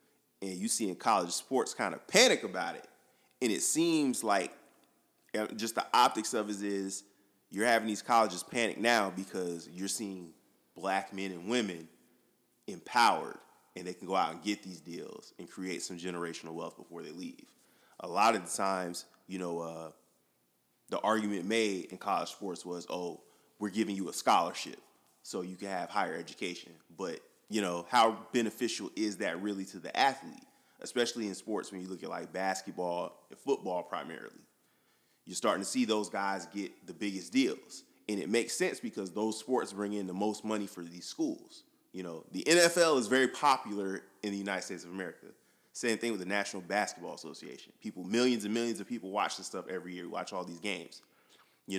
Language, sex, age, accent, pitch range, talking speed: English, male, 30-49, American, 90-110 Hz, 190 wpm